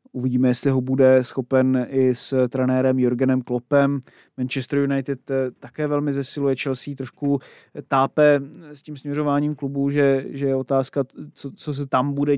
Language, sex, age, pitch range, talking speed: Czech, male, 30-49, 125-140 Hz, 150 wpm